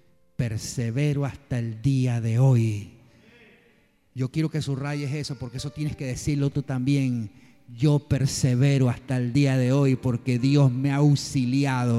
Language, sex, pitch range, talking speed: Spanish, male, 125-160 Hz, 150 wpm